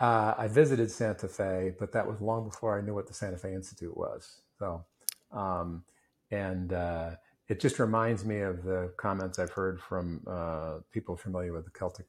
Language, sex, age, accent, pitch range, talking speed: English, male, 50-69, American, 90-110 Hz, 190 wpm